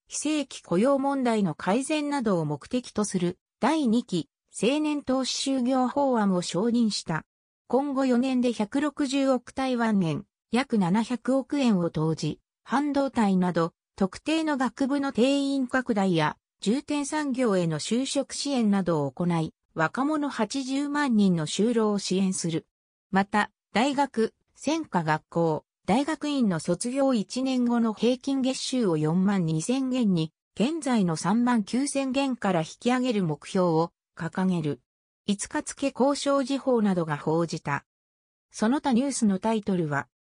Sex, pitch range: female, 175-270 Hz